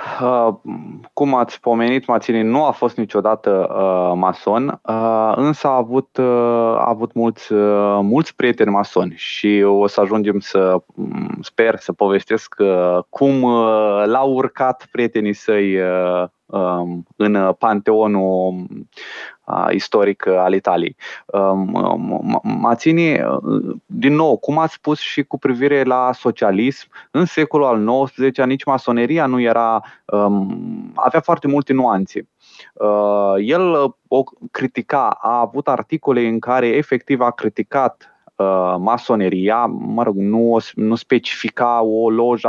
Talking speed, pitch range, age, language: 130 wpm, 100-135 Hz, 20-39, Romanian